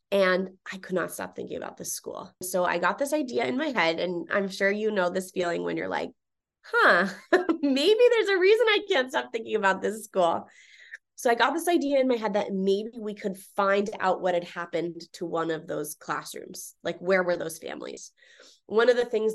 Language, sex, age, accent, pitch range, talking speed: English, female, 20-39, American, 180-220 Hz, 215 wpm